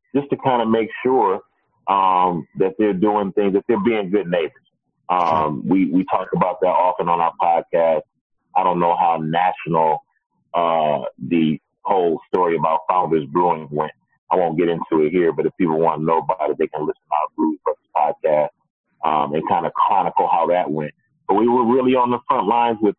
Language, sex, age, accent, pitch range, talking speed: English, male, 30-49, American, 85-130 Hz, 205 wpm